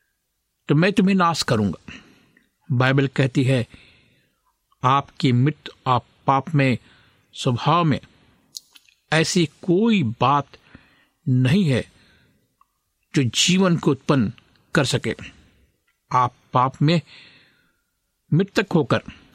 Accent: native